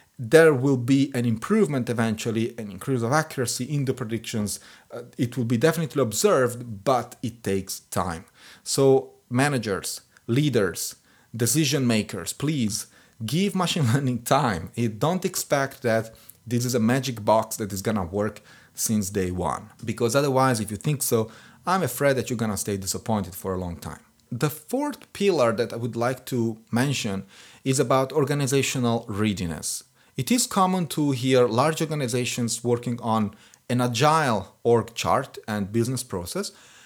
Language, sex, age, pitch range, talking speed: English, male, 30-49, 110-135 Hz, 155 wpm